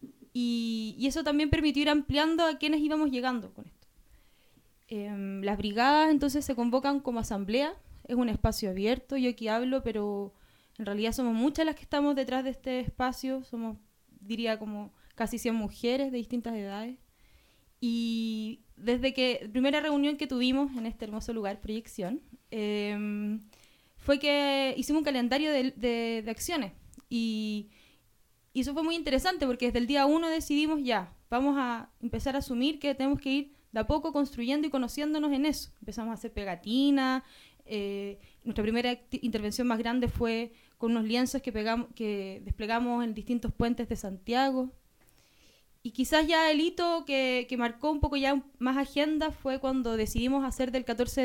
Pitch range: 225-275 Hz